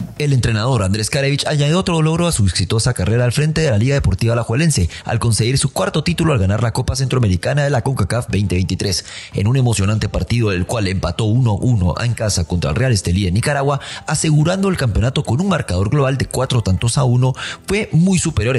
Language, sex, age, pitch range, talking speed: English, male, 30-49, 105-155 Hz, 205 wpm